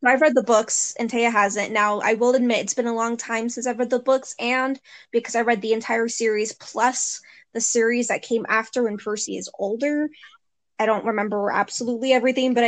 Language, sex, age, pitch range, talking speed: English, female, 10-29, 215-255 Hz, 210 wpm